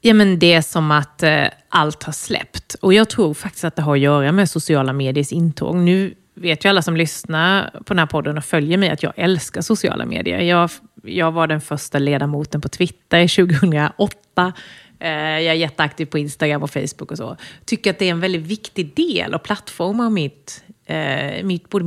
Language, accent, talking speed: Swedish, native, 185 wpm